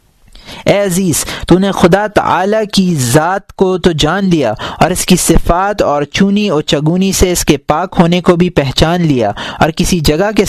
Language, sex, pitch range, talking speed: Urdu, male, 155-190 Hz, 185 wpm